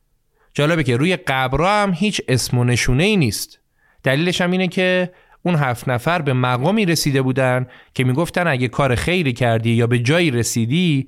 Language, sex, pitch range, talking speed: Persian, male, 120-170 Hz, 170 wpm